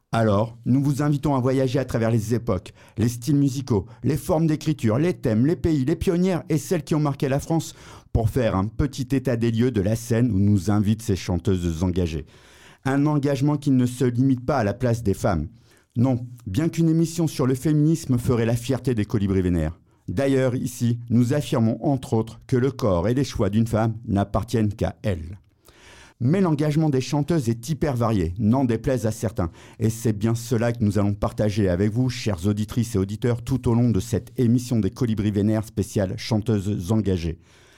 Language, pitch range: French, 105-135 Hz